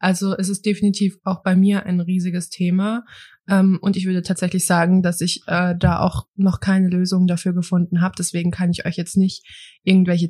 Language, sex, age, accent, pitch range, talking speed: German, female, 20-39, German, 180-215 Hz, 185 wpm